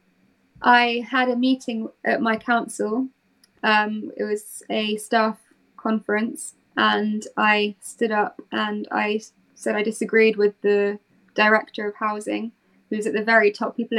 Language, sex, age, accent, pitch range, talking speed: English, female, 20-39, British, 210-235 Hz, 140 wpm